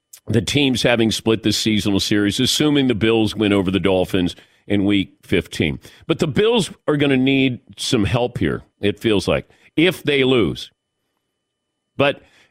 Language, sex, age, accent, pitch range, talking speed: English, male, 50-69, American, 110-150 Hz, 165 wpm